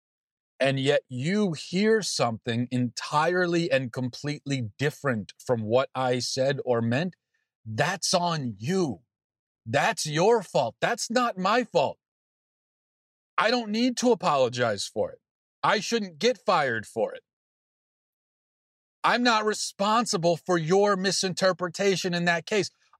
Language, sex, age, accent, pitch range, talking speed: English, male, 40-59, American, 130-210 Hz, 125 wpm